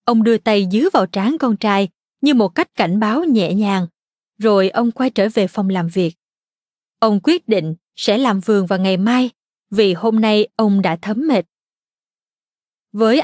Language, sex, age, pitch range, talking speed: Vietnamese, female, 20-39, 200-245 Hz, 180 wpm